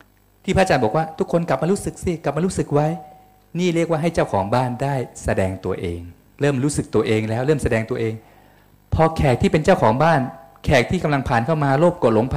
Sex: male